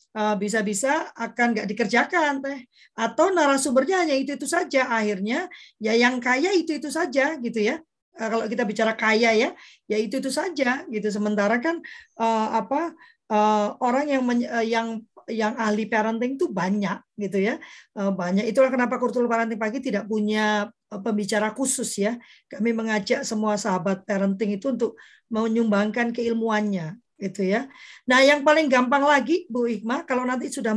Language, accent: Indonesian, native